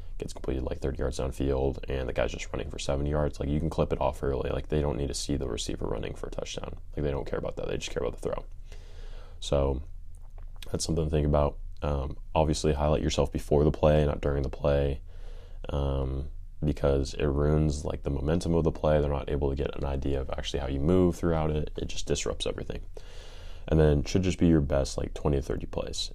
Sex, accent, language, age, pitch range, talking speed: male, American, English, 20-39, 70-80 Hz, 235 wpm